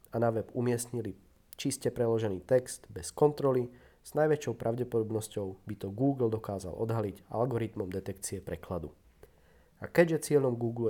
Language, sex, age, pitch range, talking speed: Czech, male, 40-59, 95-125 Hz, 130 wpm